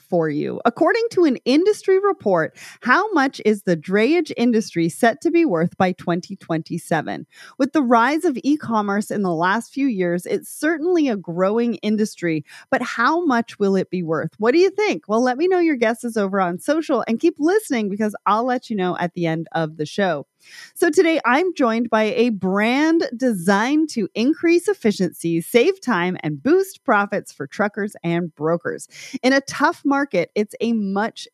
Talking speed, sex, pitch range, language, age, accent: 180 wpm, female, 185-275 Hz, English, 30-49, American